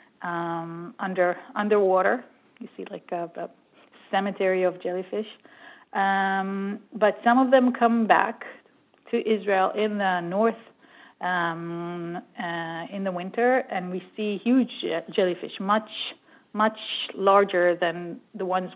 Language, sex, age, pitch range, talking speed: English, female, 30-49, 175-215 Hz, 125 wpm